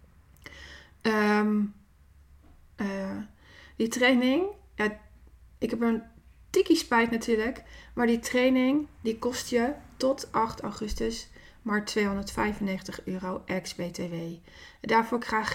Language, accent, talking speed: Dutch, Dutch, 100 wpm